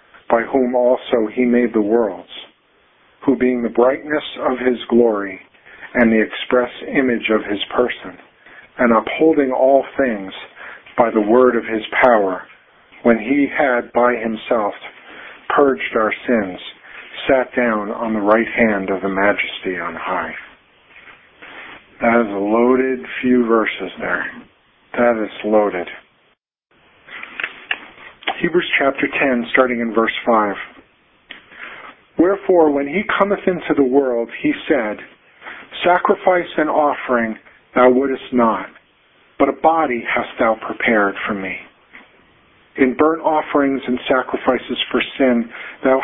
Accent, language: American, English